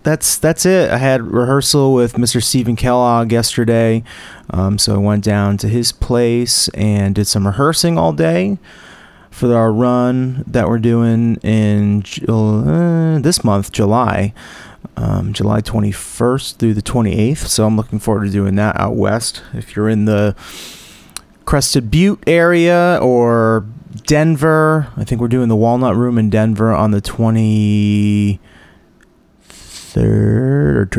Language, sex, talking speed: English, male, 145 wpm